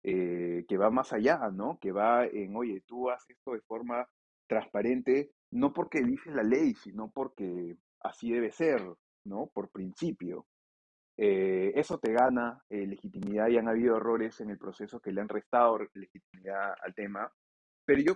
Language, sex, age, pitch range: Spanish, male, 30-49, 105-135 Hz